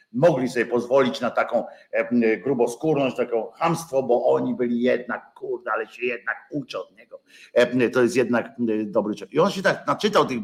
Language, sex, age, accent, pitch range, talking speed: Polish, male, 50-69, native, 135-190 Hz, 175 wpm